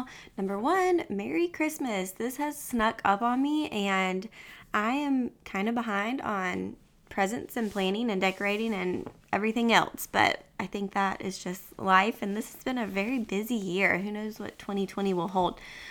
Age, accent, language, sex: 20-39, American, English, female